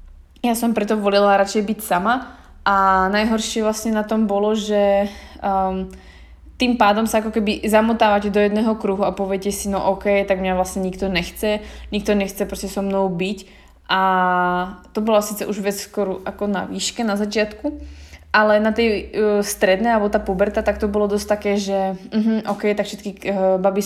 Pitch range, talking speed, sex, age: 190-210 Hz, 180 wpm, female, 20-39